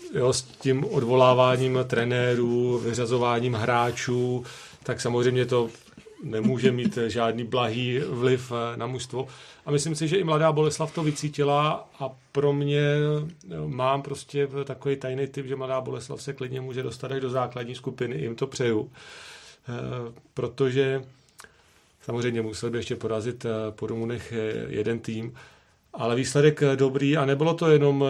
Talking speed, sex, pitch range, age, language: 145 wpm, male, 120-140 Hz, 40-59, Czech